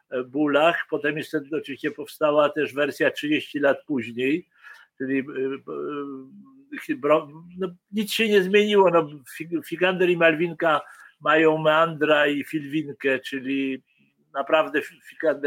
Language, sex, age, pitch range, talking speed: Polish, male, 50-69, 145-175 Hz, 95 wpm